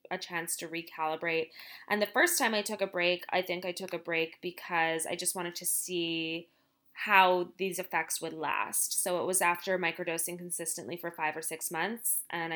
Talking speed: 195 wpm